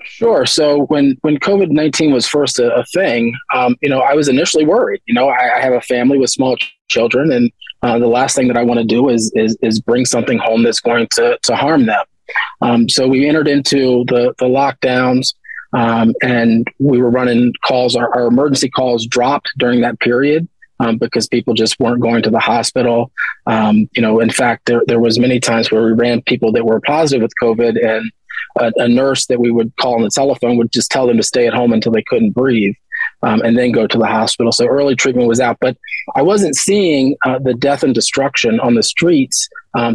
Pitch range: 115-135 Hz